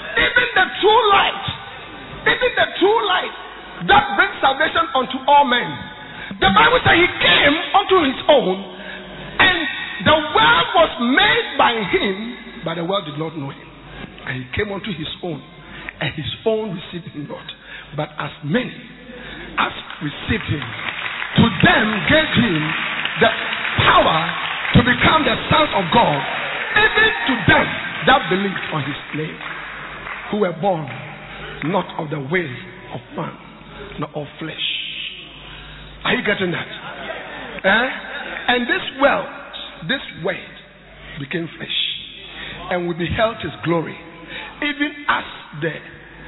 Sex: male